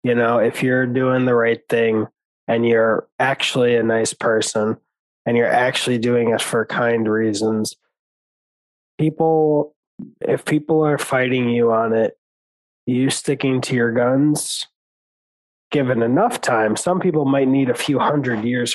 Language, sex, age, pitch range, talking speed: English, male, 20-39, 115-145 Hz, 145 wpm